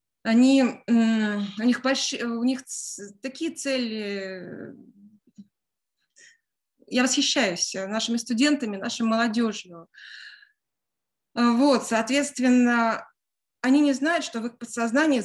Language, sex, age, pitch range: Russian, female, 20-39, 215-260 Hz